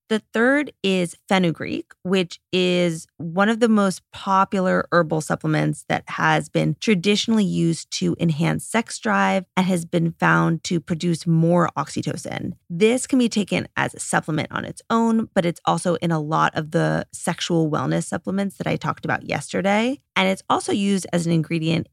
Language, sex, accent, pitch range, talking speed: English, female, American, 160-200 Hz, 170 wpm